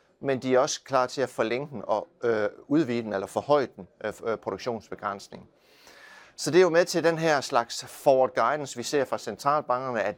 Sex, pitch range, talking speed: male, 110-140 Hz, 205 wpm